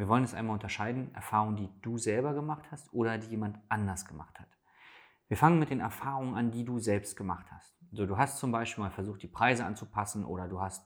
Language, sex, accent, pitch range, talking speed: German, male, German, 100-135 Hz, 220 wpm